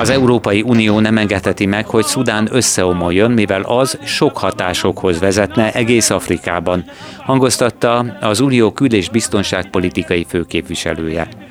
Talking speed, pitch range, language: 115 wpm, 90-115 Hz, Hungarian